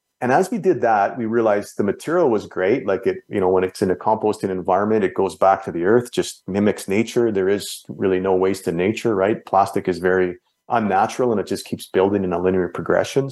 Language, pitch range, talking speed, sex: English, 95-120 Hz, 230 wpm, male